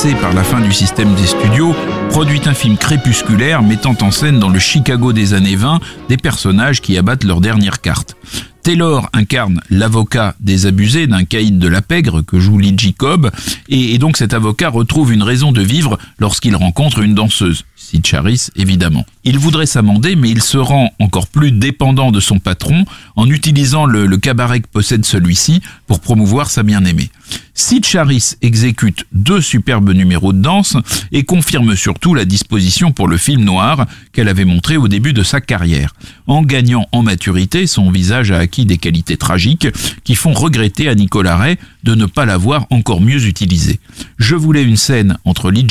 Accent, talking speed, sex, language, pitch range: French, 180 wpm, male, French, 100-140 Hz